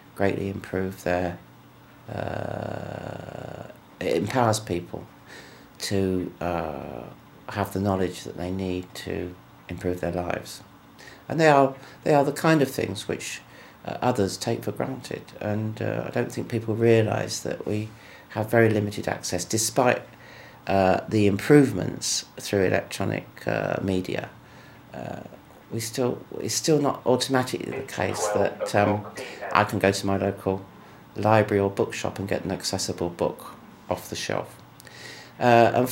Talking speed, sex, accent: 140 wpm, male, British